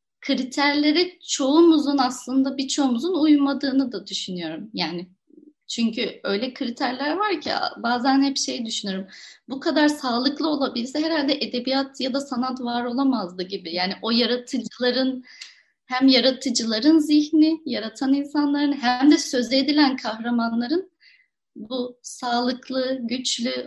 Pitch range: 225-285 Hz